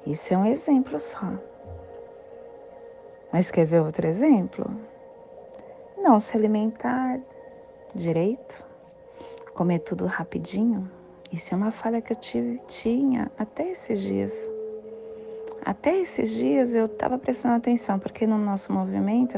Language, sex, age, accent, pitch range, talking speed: Portuguese, female, 30-49, Brazilian, 200-330 Hz, 120 wpm